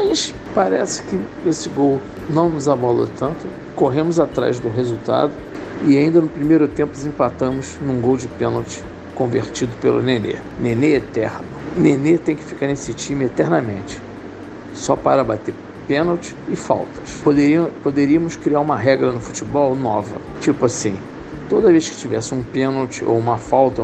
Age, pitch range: 60-79, 120-175 Hz